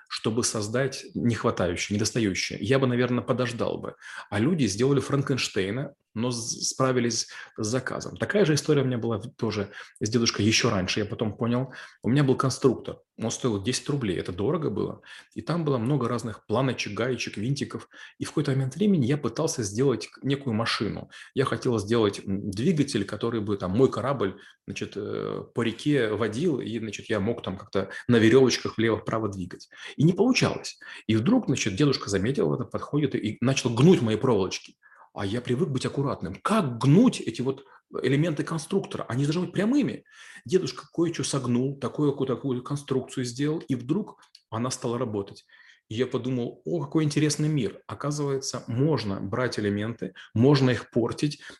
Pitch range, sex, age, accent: 115-140 Hz, male, 30-49, native